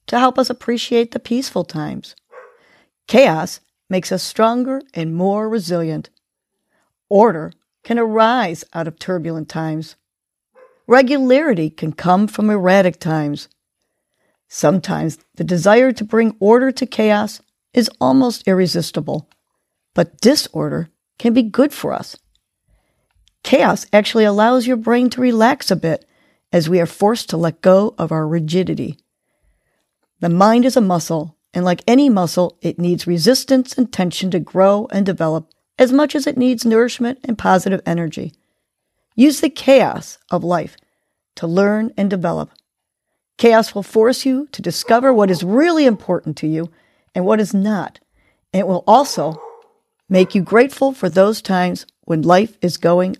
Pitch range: 175-245 Hz